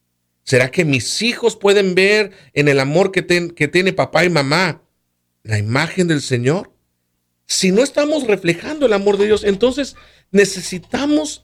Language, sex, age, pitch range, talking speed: Spanish, male, 50-69, 125-205 Hz, 150 wpm